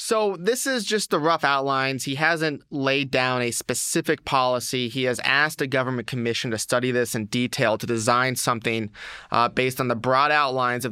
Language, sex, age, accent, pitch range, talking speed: English, male, 30-49, American, 120-145 Hz, 190 wpm